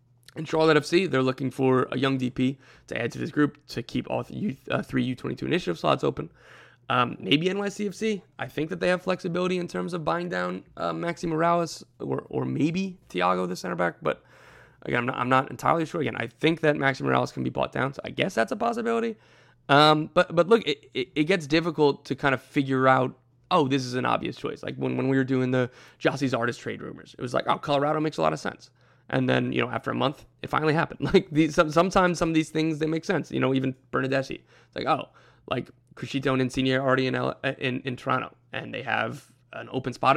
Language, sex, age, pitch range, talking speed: English, male, 20-39, 130-160 Hz, 235 wpm